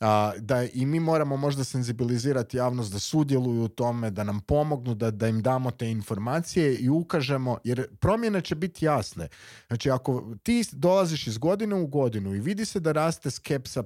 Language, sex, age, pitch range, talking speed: Croatian, male, 30-49, 115-160 Hz, 180 wpm